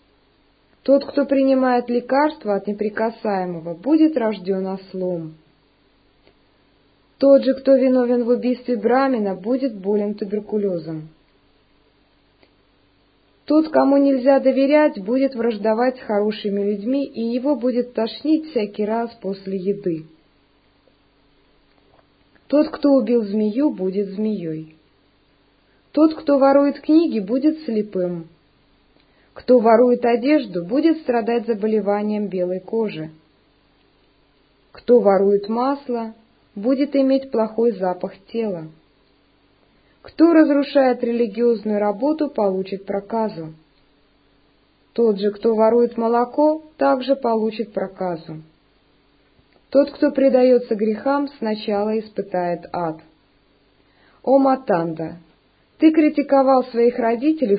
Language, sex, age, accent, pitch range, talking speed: Russian, female, 20-39, native, 185-265 Hz, 95 wpm